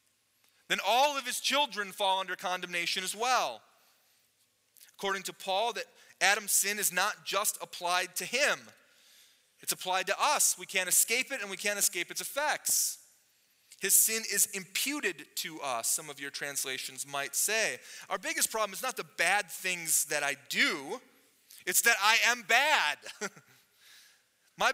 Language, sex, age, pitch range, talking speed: English, male, 30-49, 190-250 Hz, 160 wpm